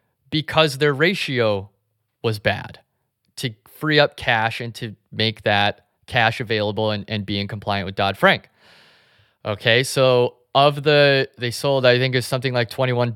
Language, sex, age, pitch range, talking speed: English, male, 20-39, 110-130 Hz, 160 wpm